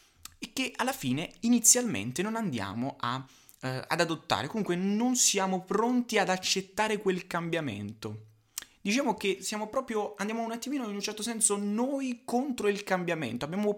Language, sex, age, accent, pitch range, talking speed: Italian, male, 20-39, native, 130-210 Hz, 150 wpm